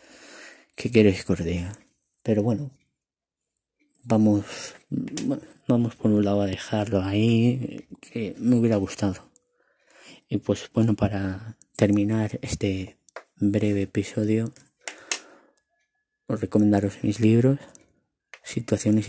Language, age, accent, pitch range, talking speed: Spanish, 20-39, Spanish, 100-125 Hz, 95 wpm